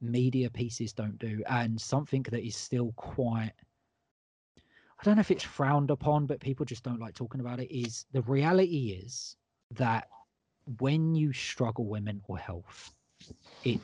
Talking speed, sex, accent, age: 160 wpm, male, British, 20-39